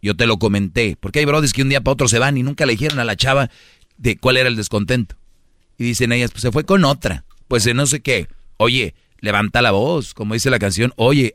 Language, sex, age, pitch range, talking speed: Spanish, male, 40-59, 105-130 Hz, 250 wpm